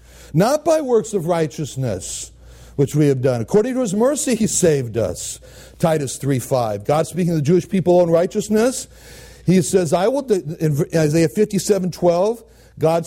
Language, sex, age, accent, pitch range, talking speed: English, male, 60-79, American, 135-190 Hz, 165 wpm